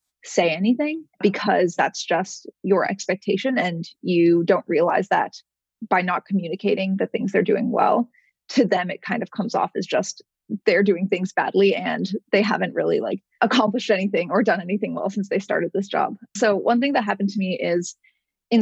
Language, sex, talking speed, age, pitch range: English, female, 185 wpm, 20-39, 180-230 Hz